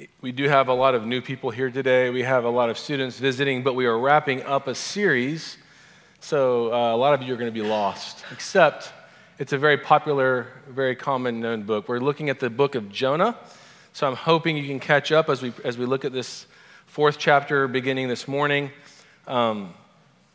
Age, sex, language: 40-59, male, English